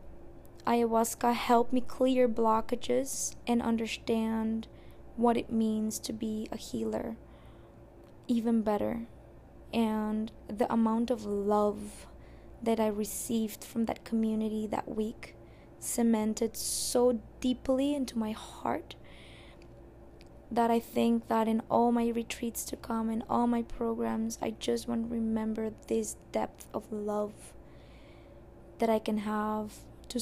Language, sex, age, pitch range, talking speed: English, female, 20-39, 215-235 Hz, 125 wpm